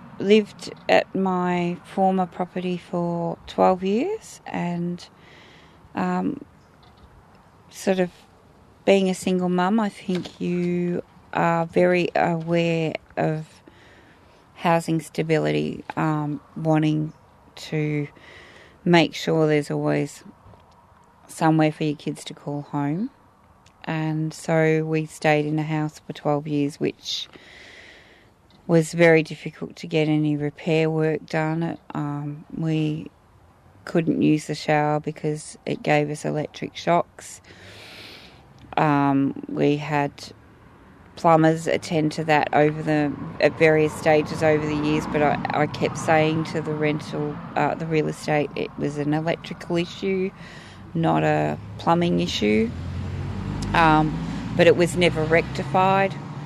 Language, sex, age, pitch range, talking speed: English, female, 30-49, 145-165 Hz, 120 wpm